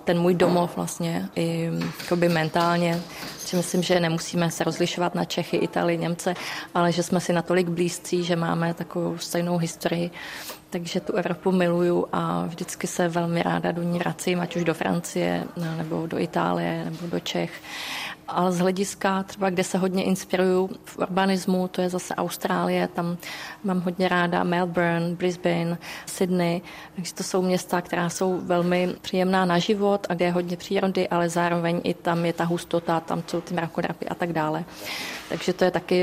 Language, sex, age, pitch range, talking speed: Czech, female, 20-39, 170-180 Hz, 170 wpm